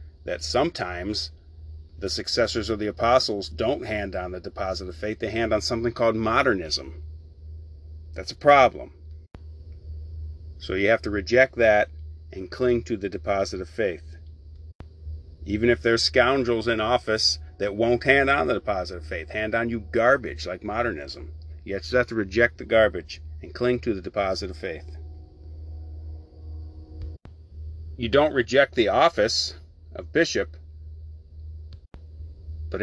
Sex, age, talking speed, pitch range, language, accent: male, 40-59, 145 wpm, 80-115 Hz, English, American